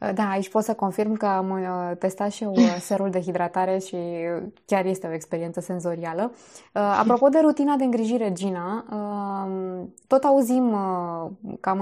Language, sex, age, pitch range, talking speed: Romanian, female, 20-39, 180-220 Hz, 140 wpm